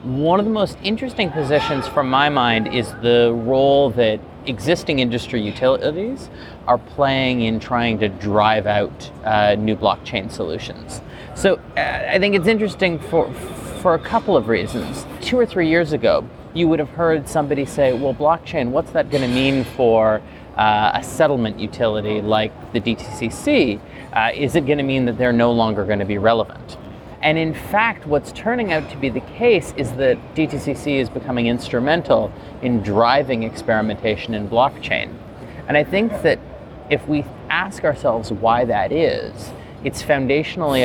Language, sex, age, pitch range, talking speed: English, male, 30-49, 115-155 Hz, 165 wpm